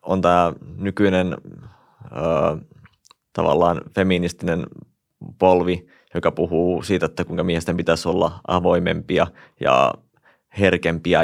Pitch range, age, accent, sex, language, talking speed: 85-95 Hz, 20-39, native, male, Finnish, 95 wpm